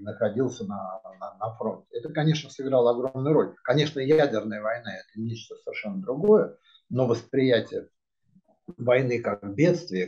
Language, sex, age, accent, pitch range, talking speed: Russian, male, 50-69, native, 115-180 Hz, 135 wpm